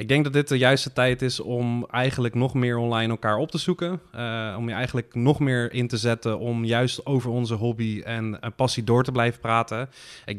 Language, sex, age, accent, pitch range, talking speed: Dutch, male, 20-39, Dutch, 110-125 Hz, 225 wpm